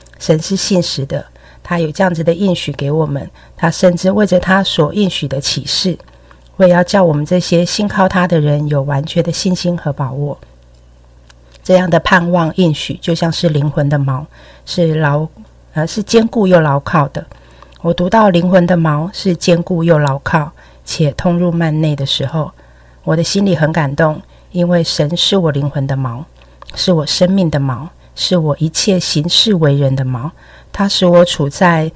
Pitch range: 145-180 Hz